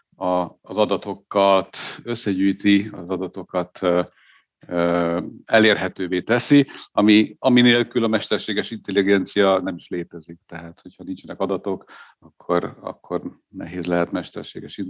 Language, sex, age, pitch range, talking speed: Hungarian, male, 50-69, 95-115 Hz, 100 wpm